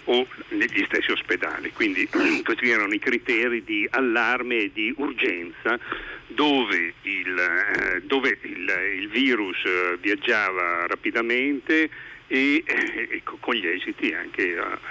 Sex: male